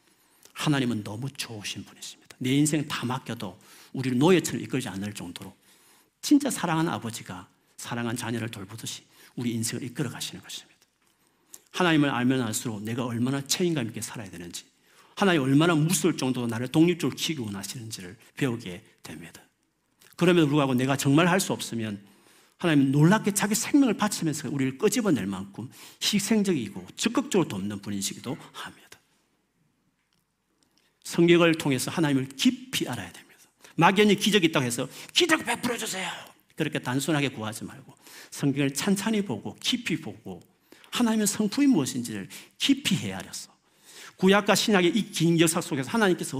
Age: 40-59